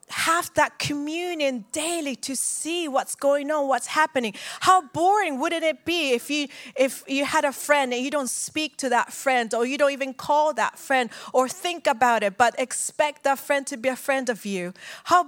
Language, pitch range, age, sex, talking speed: English, 270-315 Hz, 30-49, female, 205 wpm